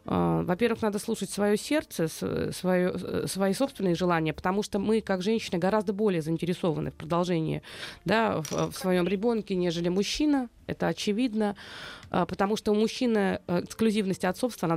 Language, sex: Russian, female